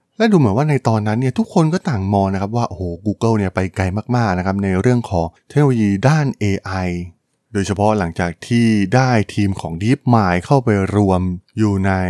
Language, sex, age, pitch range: Thai, male, 20-39, 95-120 Hz